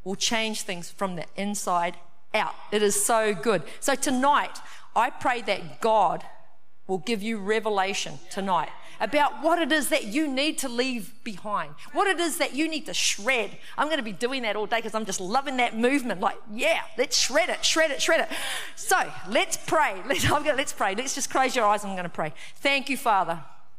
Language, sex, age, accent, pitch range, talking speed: English, female, 40-59, Australian, 200-270 Hz, 200 wpm